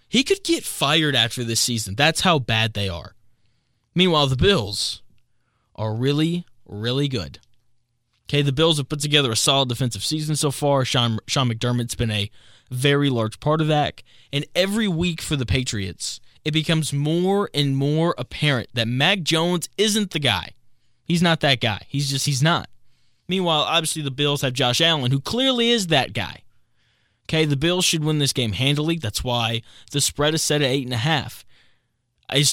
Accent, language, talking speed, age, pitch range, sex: American, English, 185 wpm, 20-39, 120-155 Hz, male